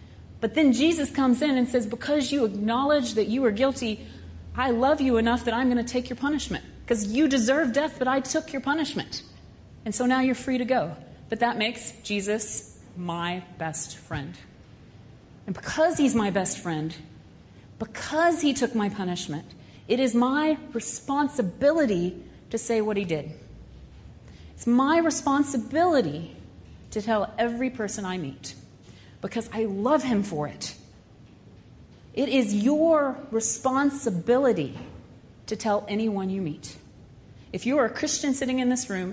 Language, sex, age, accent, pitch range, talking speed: English, female, 40-59, American, 175-260 Hz, 155 wpm